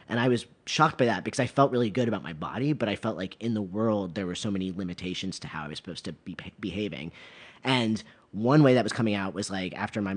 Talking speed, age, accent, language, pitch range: 270 wpm, 30-49, American, English, 95-125 Hz